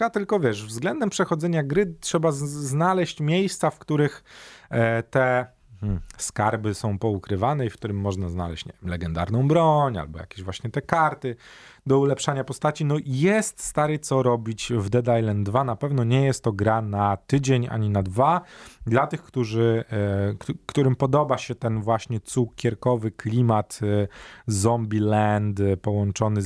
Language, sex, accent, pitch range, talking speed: Polish, male, native, 105-165 Hz, 150 wpm